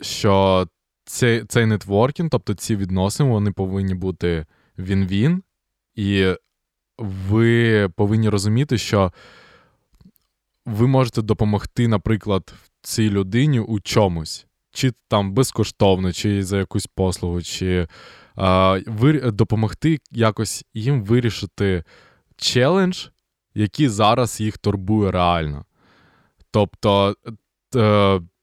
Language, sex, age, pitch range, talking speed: Ukrainian, male, 20-39, 95-115 Hz, 95 wpm